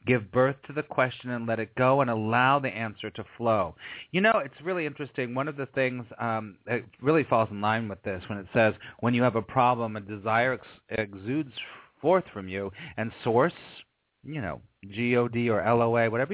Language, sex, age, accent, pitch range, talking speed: English, male, 30-49, American, 110-135 Hz, 200 wpm